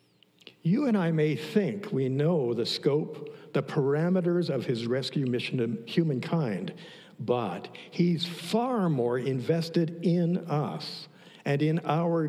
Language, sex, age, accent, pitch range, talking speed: English, male, 60-79, American, 130-175 Hz, 130 wpm